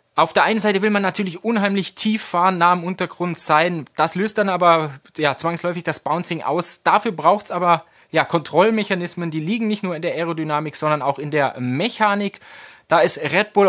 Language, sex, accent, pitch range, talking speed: German, male, German, 150-205 Hz, 190 wpm